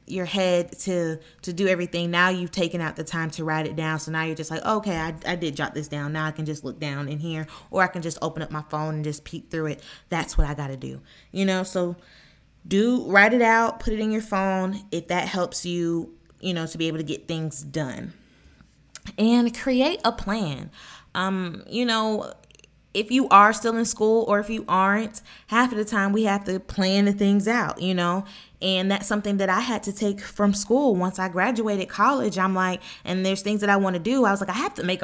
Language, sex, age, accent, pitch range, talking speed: English, female, 20-39, American, 170-215 Hz, 240 wpm